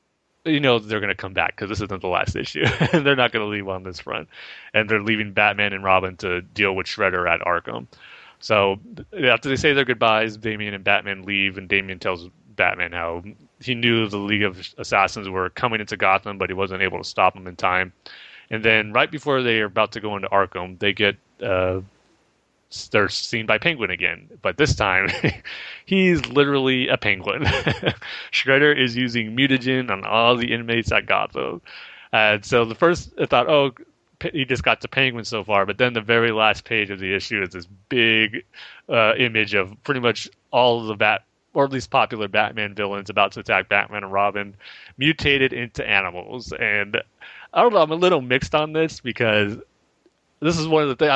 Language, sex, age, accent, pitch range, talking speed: English, male, 30-49, American, 100-130 Hz, 200 wpm